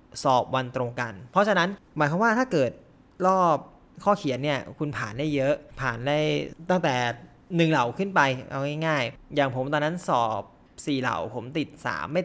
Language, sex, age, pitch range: Thai, male, 20-39, 130-165 Hz